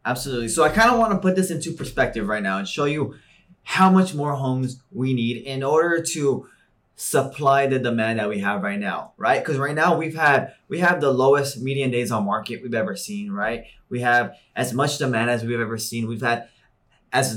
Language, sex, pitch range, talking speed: English, male, 120-170 Hz, 220 wpm